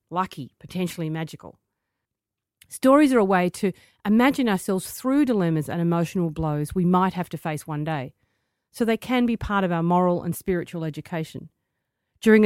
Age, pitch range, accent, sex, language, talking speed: 40-59, 160-195 Hz, Australian, female, English, 165 wpm